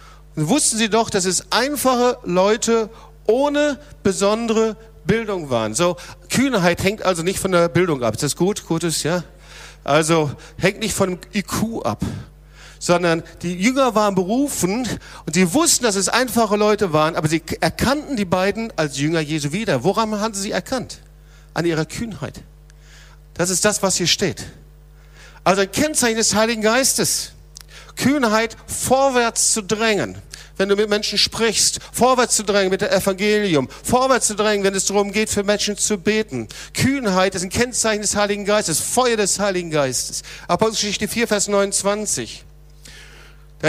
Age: 50-69